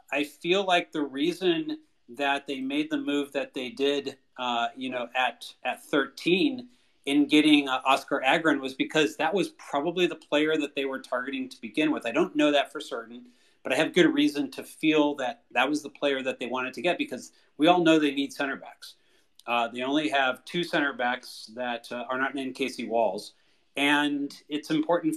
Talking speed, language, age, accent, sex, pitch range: 205 wpm, English, 40-59, American, male, 125-150 Hz